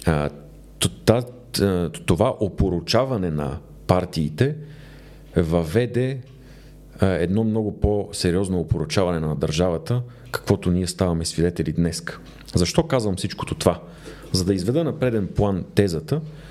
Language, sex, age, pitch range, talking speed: Bulgarian, male, 40-59, 85-130 Hz, 100 wpm